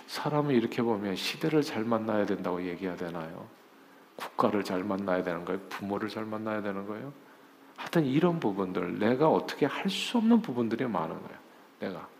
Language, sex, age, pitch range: Korean, male, 50-69, 105-150 Hz